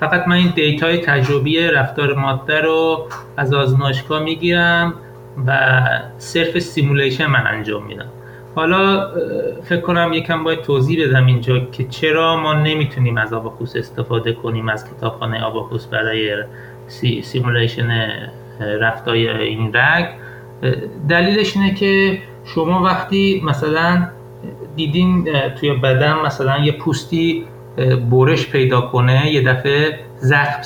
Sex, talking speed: male, 115 wpm